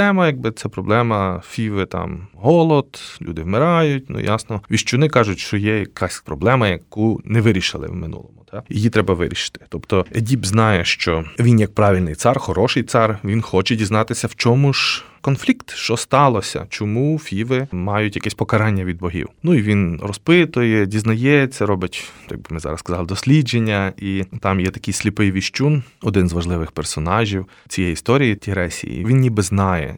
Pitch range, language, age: 95-120 Hz, Ukrainian, 20-39